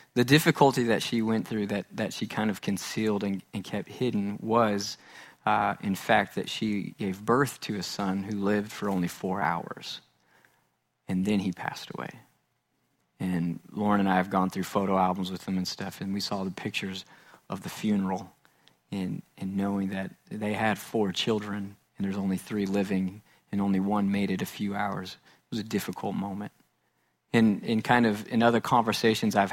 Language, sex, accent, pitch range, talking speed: English, male, American, 100-115 Hz, 190 wpm